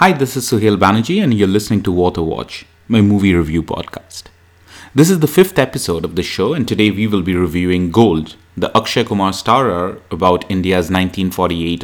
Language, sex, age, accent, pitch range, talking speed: English, male, 30-49, Indian, 85-110 Hz, 180 wpm